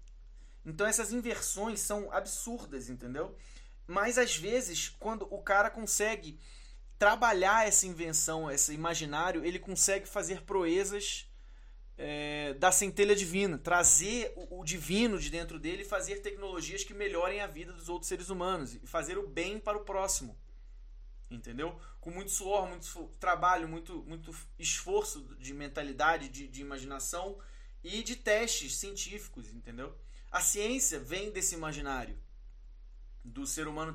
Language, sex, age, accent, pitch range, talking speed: Portuguese, male, 20-39, Brazilian, 155-205 Hz, 140 wpm